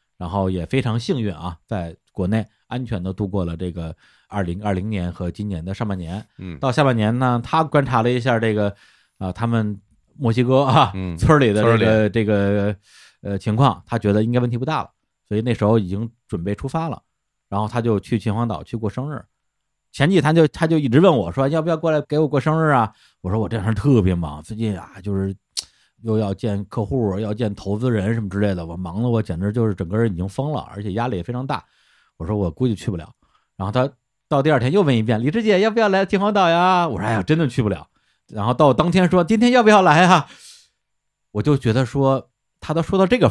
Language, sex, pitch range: Chinese, male, 100-140 Hz